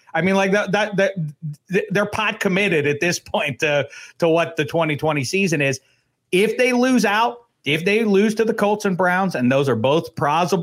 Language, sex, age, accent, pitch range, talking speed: English, male, 40-59, American, 130-180 Hz, 205 wpm